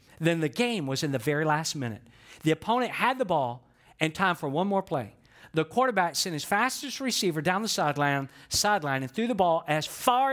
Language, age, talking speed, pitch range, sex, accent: English, 50-69, 205 wpm, 130-185 Hz, male, American